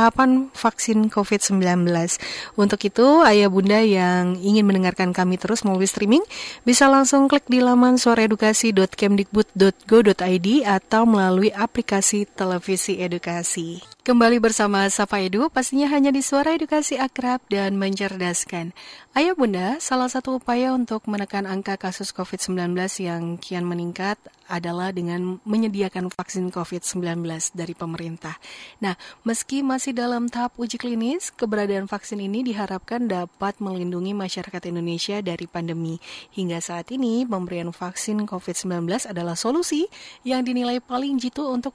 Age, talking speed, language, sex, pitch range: 30-49, 125 wpm, Indonesian, female, 190-250 Hz